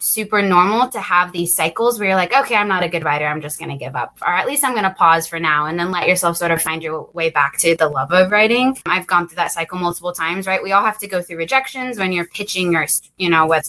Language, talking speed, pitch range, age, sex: English, 295 wpm, 175-220 Hz, 20-39, female